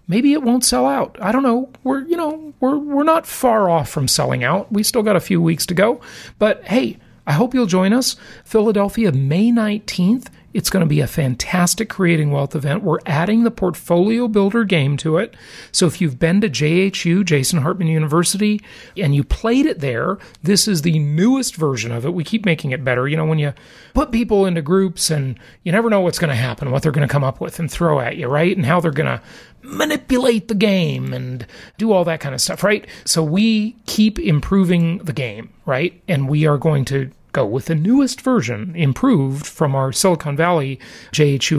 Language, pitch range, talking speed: English, 155-215 Hz, 210 wpm